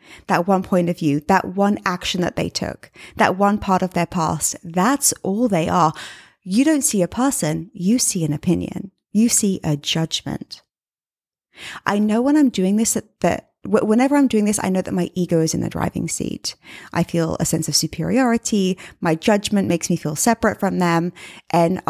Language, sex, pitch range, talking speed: English, female, 175-230 Hz, 195 wpm